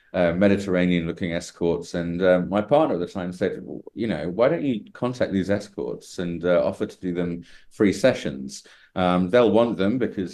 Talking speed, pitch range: 195 wpm, 85-100 Hz